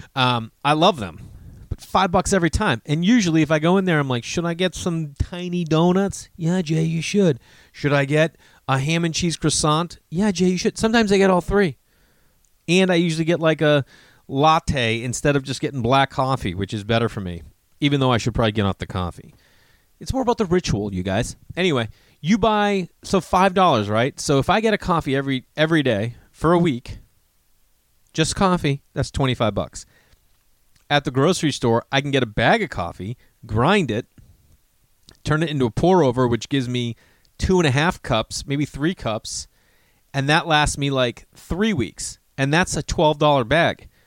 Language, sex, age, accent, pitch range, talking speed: English, male, 30-49, American, 120-170 Hz, 195 wpm